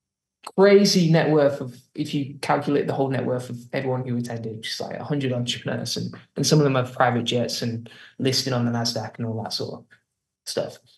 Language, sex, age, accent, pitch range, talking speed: English, male, 20-39, British, 130-165 Hz, 210 wpm